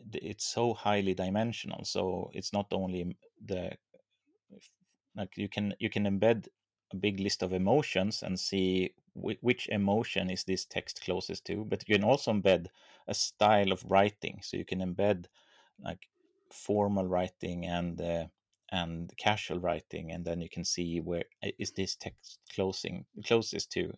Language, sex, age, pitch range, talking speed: English, male, 30-49, 90-105 Hz, 160 wpm